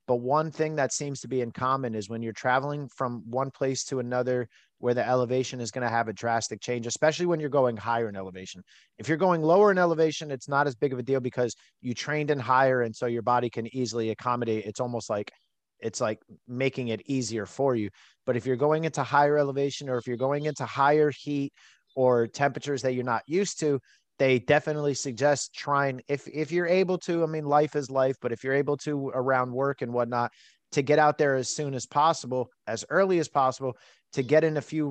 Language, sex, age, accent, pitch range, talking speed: English, male, 30-49, American, 120-145 Hz, 225 wpm